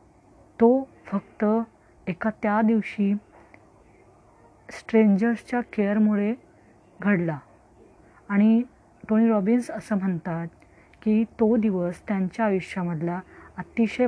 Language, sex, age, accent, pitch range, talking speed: Marathi, female, 20-39, native, 190-225 Hz, 80 wpm